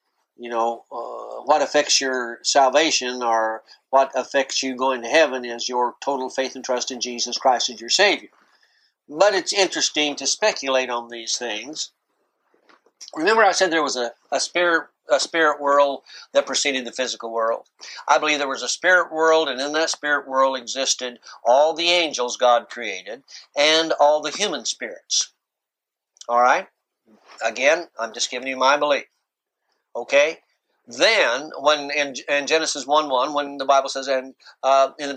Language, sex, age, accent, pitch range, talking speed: English, male, 60-79, American, 125-155 Hz, 165 wpm